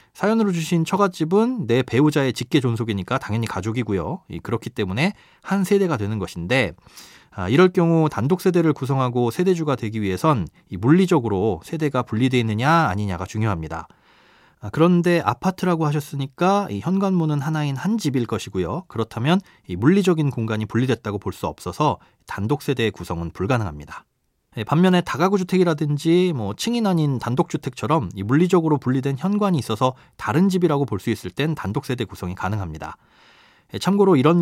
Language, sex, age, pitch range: Korean, male, 30-49, 110-170 Hz